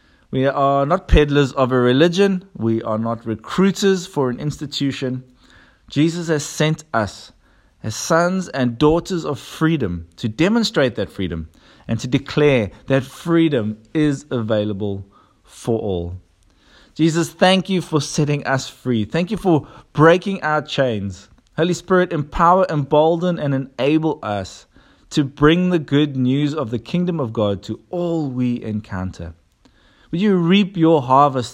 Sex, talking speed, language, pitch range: male, 145 wpm, English, 110-160 Hz